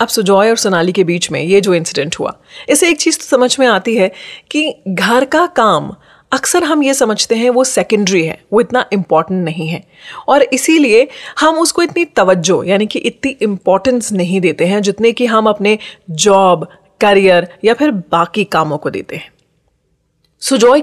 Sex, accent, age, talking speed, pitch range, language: female, native, 30-49, 180 wpm, 190-265 Hz, Hindi